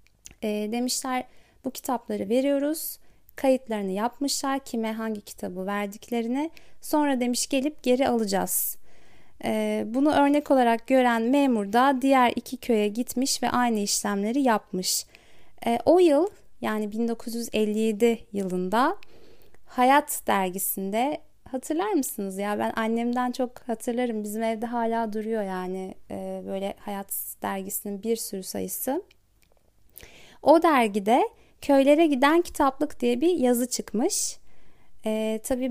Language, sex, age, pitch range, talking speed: Turkish, female, 30-49, 210-265 Hz, 110 wpm